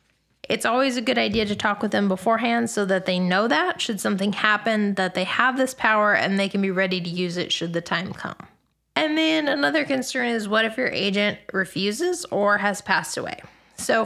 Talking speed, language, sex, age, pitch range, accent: 215 wpm, English, female, 20-39, 190-230 Hz, American